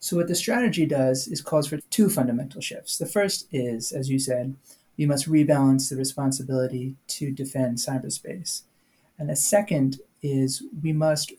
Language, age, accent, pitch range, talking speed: English, 30-49, American, 140-175 Hz, 165 wpm